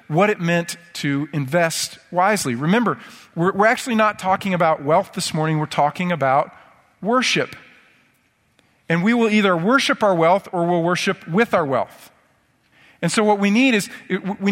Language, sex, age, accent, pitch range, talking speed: English, male, 40-59, American, 155-195 Hz, 165 wpm